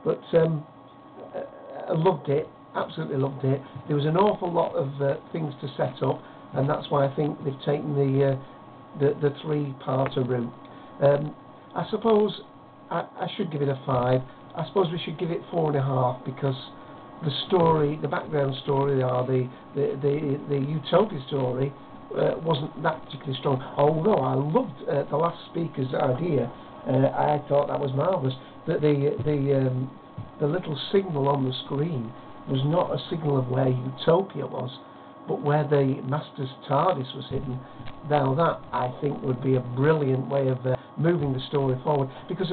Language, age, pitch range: English, 60-79, 135-165 Hz